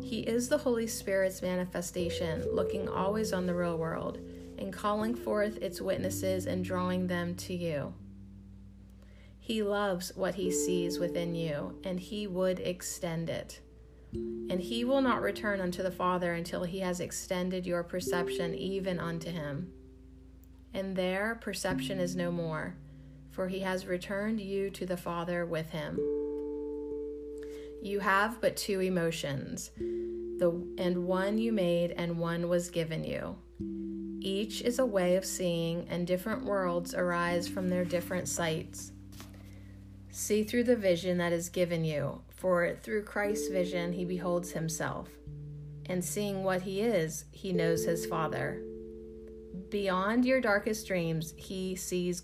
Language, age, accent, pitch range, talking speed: English, 30-49, American, 130-190 Hz, 145 wpm